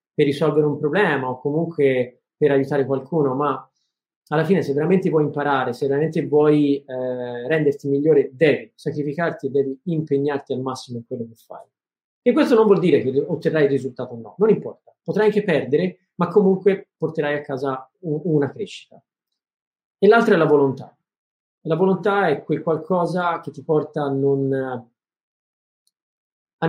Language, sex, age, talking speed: Italian, male, 30-49, 155 wpm